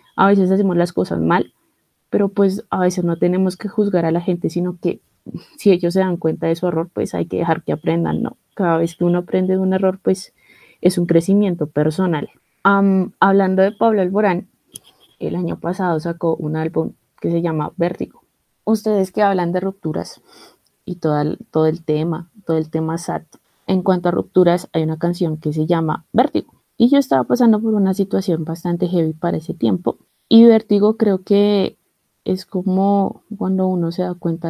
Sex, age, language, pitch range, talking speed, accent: female, 20-39, Spanish, 170-195 Hz, 195 wpm, Colombian